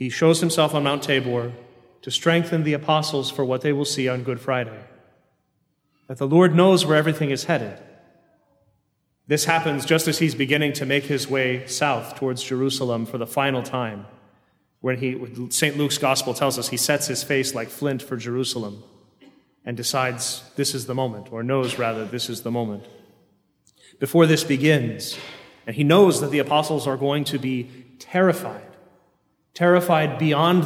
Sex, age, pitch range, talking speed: male, 30-49, 125-155 Hz, 170 wpm